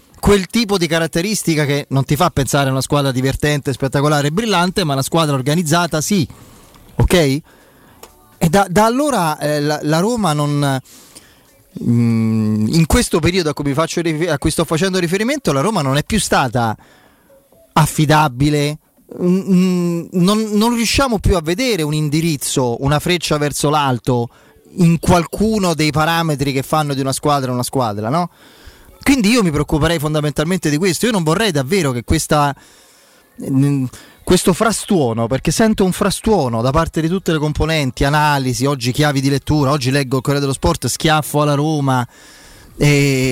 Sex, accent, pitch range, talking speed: male, native, 135-175 Hz, 160 wpm